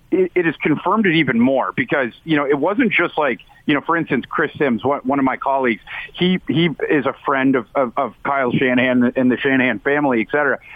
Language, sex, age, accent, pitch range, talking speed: English, male, 40-59, American, 125-150 Hz, 225 wpm